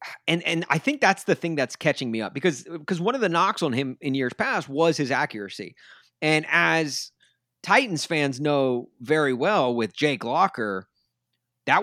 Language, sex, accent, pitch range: English, male, American, 125-165 Hz